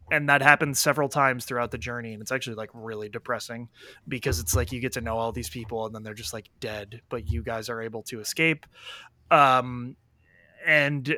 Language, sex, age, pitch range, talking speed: English, male, 20-39, 120-145 Hz, 210 wpm